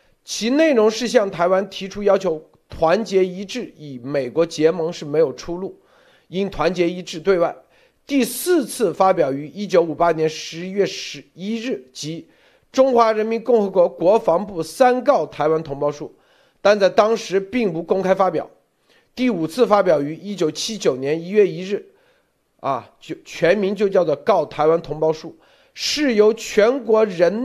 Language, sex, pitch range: Chinese, male, 155-215 Hz